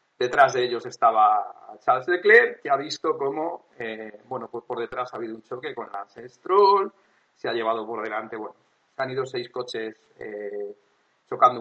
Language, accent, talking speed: Spanish, Spanish, 175 wpm